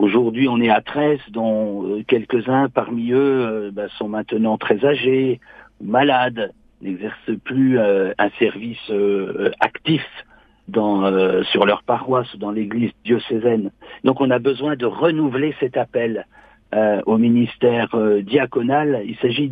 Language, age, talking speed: French, 60-79, 140 wpm